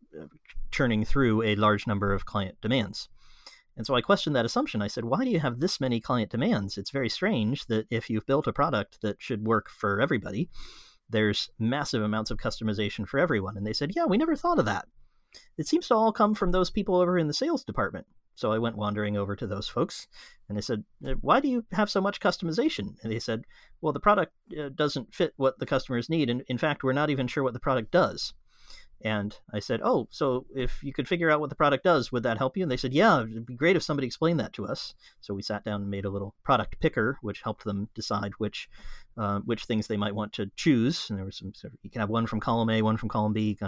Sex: male